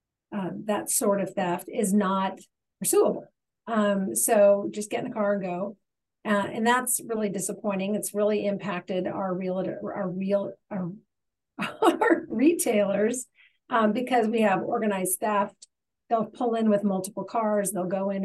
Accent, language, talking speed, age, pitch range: American, English, 155 wpm, 40-59, 190-225 Hz